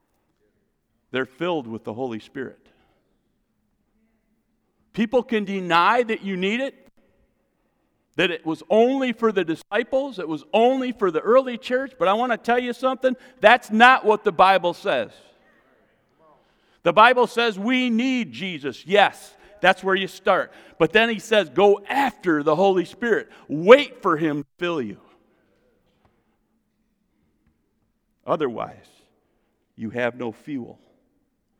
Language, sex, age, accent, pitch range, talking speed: English, male, 50-69, American, 190-250 Hz, 135 wpm